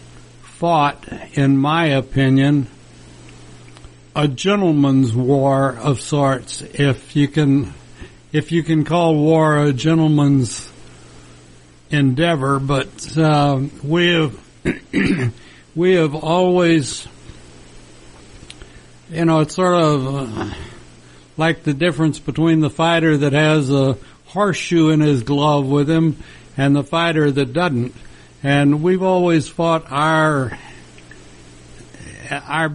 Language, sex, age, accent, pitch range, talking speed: English, male, 70-89, American, 115-160 Hz, 110 wpm